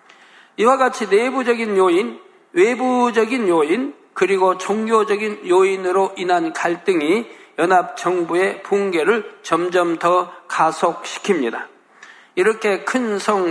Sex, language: male, Korean